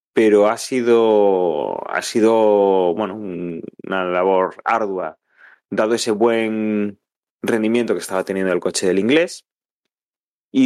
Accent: Spanish